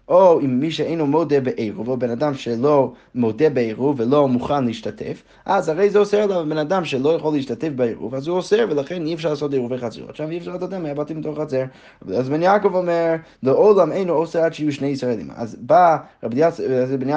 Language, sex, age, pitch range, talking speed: Hebrew, male, 20-39, 125-165 Hz, 180 wpm